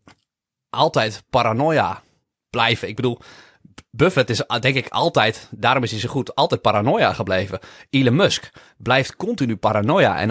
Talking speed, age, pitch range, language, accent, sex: 140 wpm, 30-49, 110-150 Hz, Dutch, Dutch, male